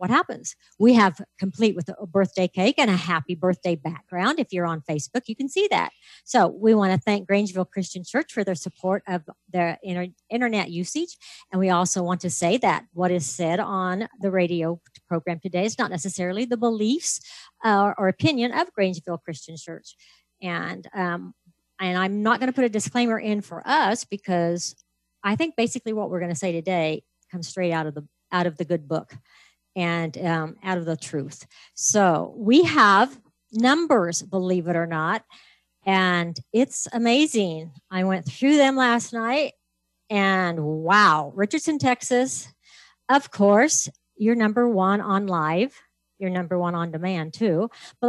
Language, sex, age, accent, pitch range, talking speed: English, female, 50-69, American, 170-225 Hz, 170 wpm